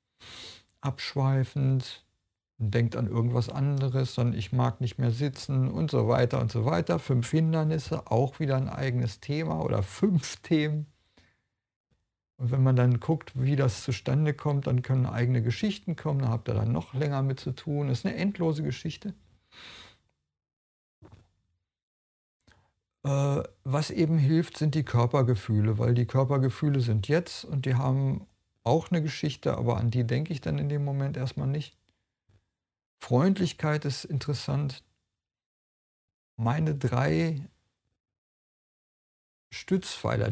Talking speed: 135 wpm